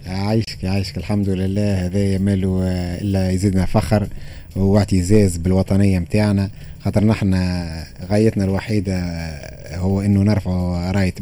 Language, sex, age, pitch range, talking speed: Arabic, male, 30-49, 95-110 Hz, 105 wpm